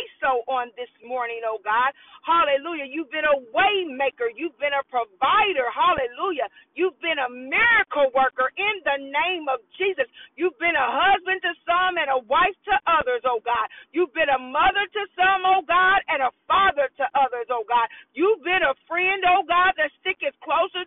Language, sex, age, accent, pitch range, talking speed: English, female, 40-59, American, 290-365 Hz, 180 wpm